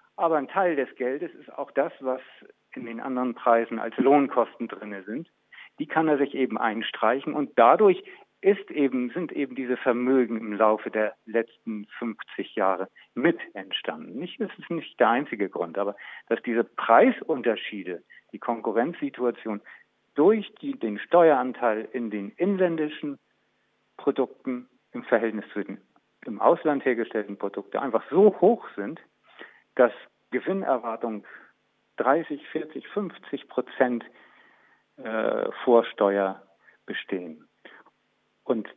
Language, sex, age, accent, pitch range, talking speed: German, male, 50-69, German, 120-175 Hz, 125 wpm